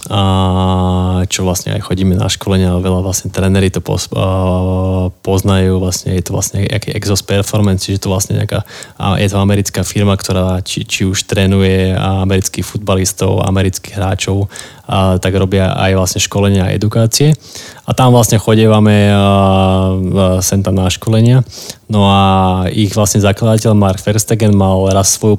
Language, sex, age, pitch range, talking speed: Slovak, male, 20-39, 95-115 Hz, 150 wpm